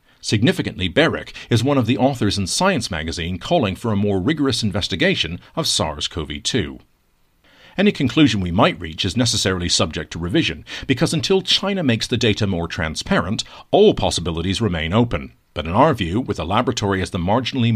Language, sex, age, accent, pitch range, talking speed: English, male, 50-69, American, 90-125 Hz, 170 wpm